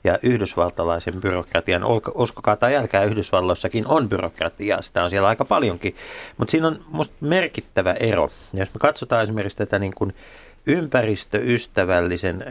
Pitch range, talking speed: 95-120 Hz, 140 wpm